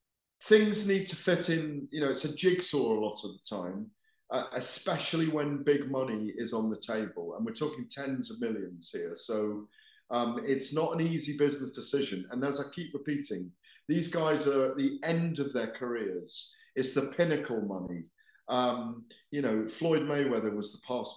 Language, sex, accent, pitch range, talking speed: English, male, British, 110-155 Hz, 185 wpm